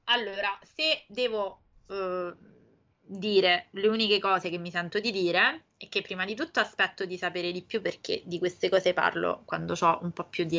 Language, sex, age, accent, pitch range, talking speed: Italian, female, 20-39, native, 175-215 Hz, 195 wpm